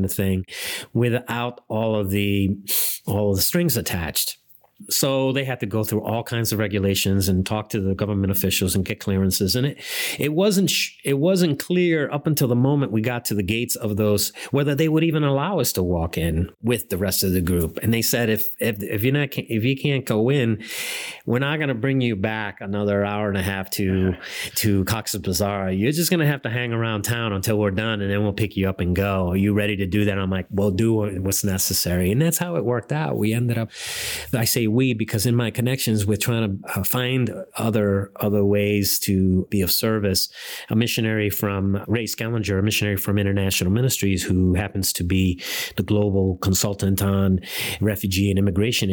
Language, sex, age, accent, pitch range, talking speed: English, male, 30-49, American, 95-120 Hz, 210 wpm